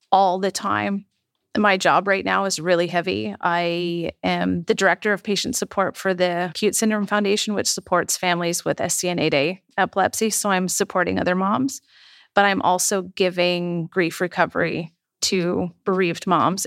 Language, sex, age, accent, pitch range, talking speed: English, female, 30-49, American, 180-205 Hz, 155 wpm